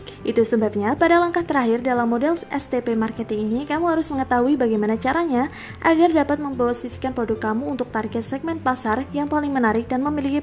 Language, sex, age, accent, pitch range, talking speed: Indonesian, female, 20-39, native, 220-290 Hz, 165 wpm